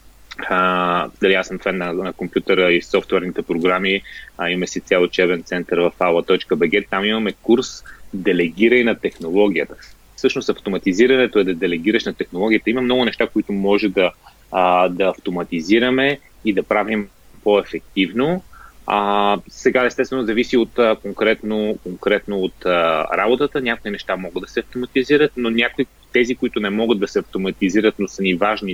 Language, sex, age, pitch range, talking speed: Bulgarian, male, 30-49, 95-115 Hz, 150 wpm